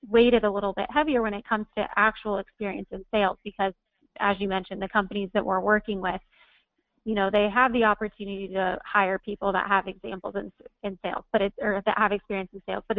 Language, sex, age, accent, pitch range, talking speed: English, female, 30-49, American, 190-215 Hz, 215 wpm